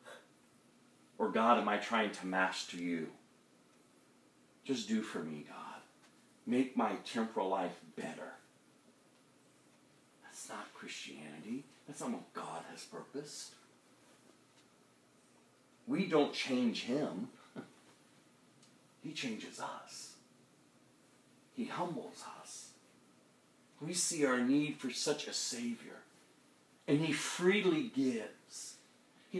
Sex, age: male, 40-59